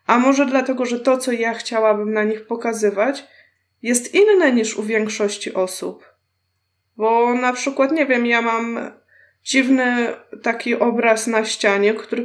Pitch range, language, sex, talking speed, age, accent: 215-260 Hz, Polish, female, 145 wpm, 20-39, native